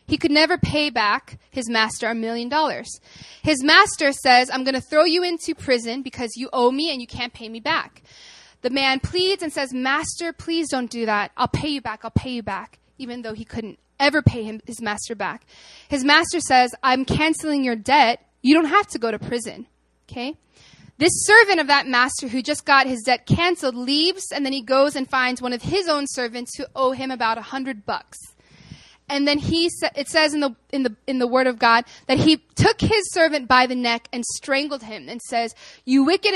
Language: English